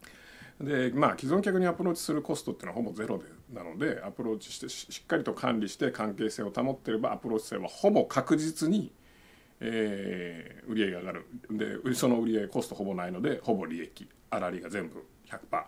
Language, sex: Japanese, male